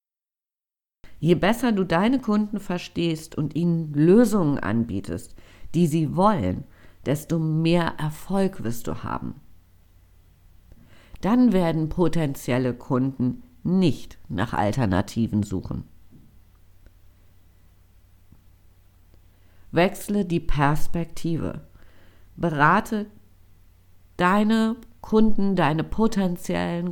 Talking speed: 80 wpm